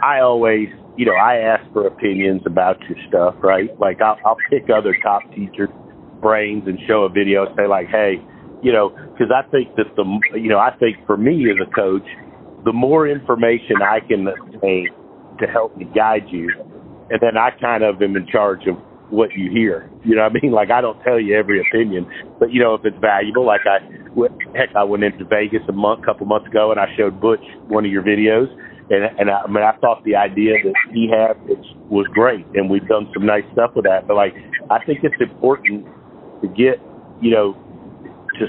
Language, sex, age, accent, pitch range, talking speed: English, male, 50-69, American, 100-115 Hz, 220 wpm